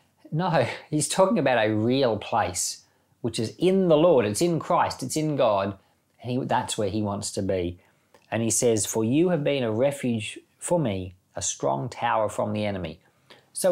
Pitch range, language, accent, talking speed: 100-130 Hz, English, Australian, 190 wpm